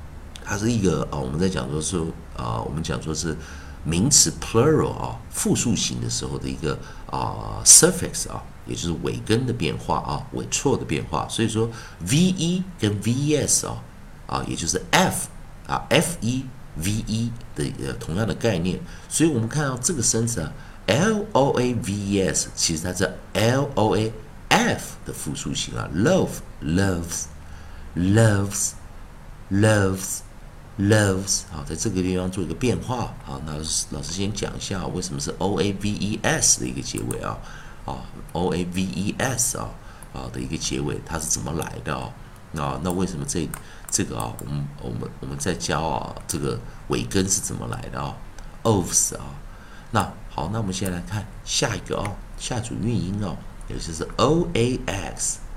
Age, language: 50-69, Chinese